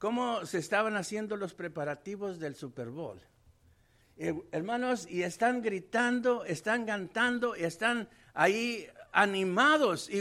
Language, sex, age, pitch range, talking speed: English, male, 60-79, 195-270 Hz, 125 wpm